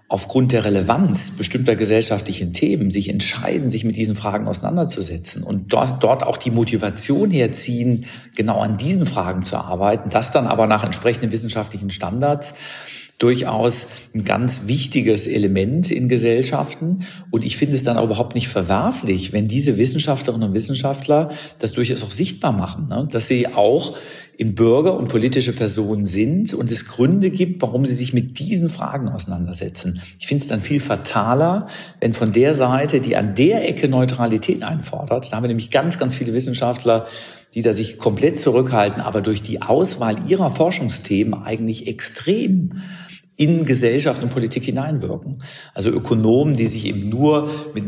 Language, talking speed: German, 160 wpm